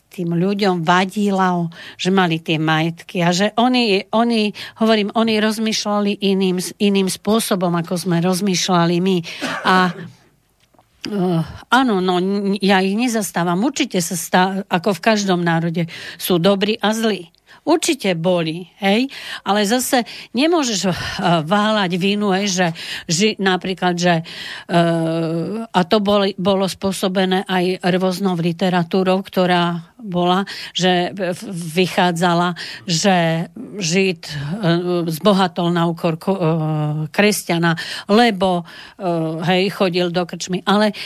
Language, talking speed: Slovak, 115 wpm